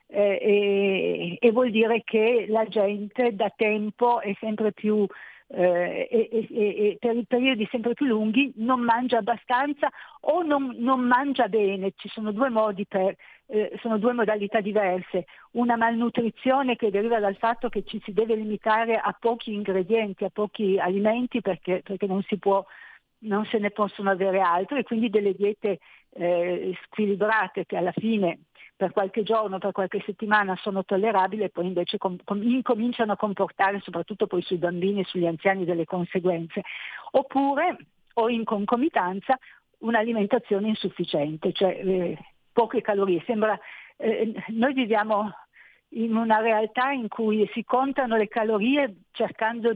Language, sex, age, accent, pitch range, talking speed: Italian, female, 50-69, native, 195-230 Hz, 150 wpm